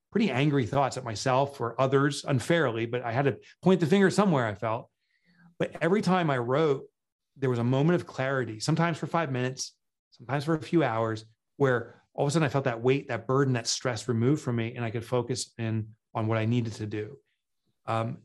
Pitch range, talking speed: 115-140 Hz, 215 wpm